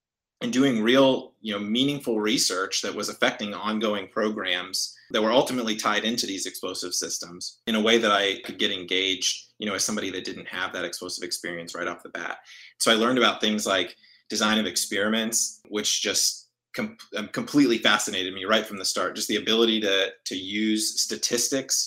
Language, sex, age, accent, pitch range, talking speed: English, male, 30-49, American, 100-115 Hz, 185 wpm